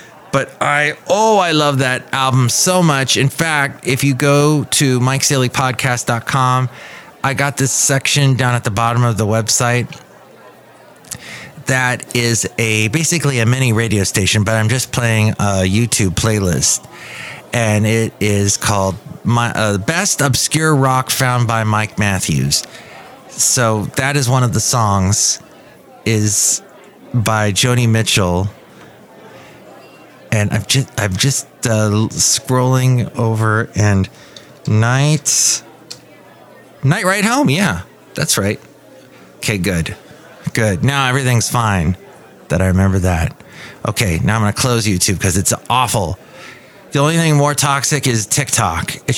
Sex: male